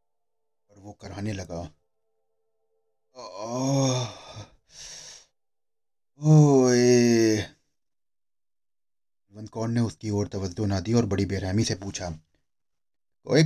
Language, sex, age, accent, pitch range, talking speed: Hindi, male, 30-49, native, 95-120 Hz, 75 wpm